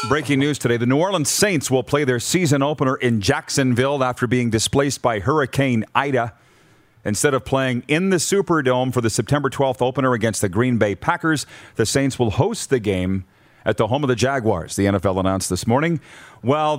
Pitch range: 110-140 Hz